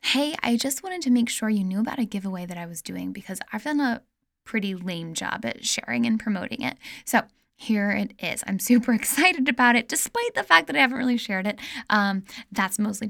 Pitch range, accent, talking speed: 200-255 Hz, American, 225 wpm